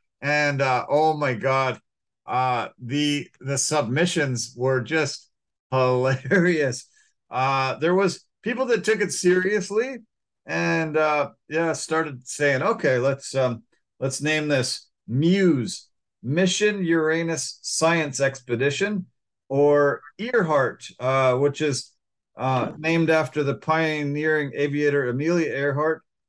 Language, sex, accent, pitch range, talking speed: English, male, American, 130-170 Hz, 110 wpm